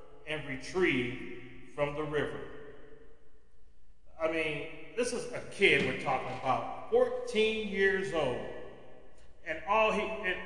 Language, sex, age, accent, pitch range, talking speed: English, male, 40-59, American, 145-210 Hz, 120 wpm